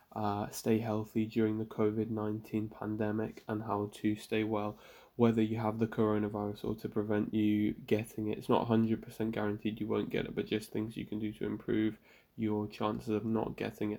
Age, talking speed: 10-29, 195 wpm